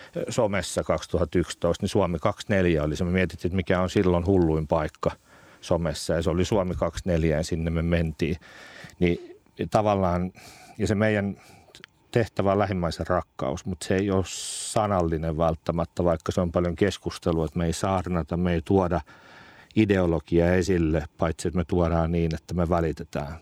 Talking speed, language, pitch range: 160 wpm, Finnish, 85-100 Hz